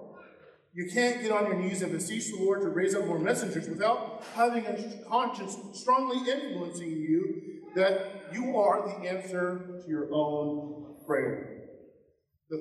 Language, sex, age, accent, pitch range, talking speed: English, male, 40-59, American, 180-235 Hz, 150 wpm